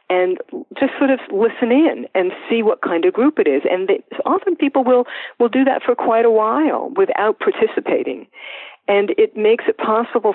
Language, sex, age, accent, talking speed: English, female, 50-69, American, 185 wpm